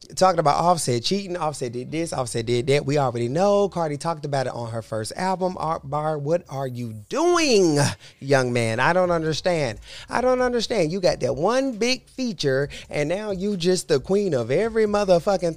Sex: male